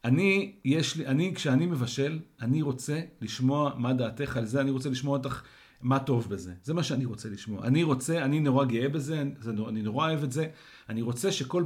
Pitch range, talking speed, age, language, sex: 125-160 Hz, 180 wpm, 40-59, Hebrew, male